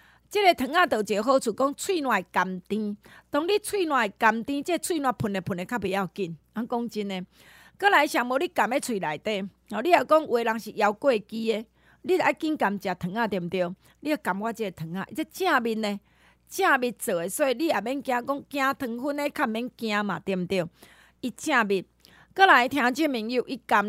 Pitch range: 205-285 Hz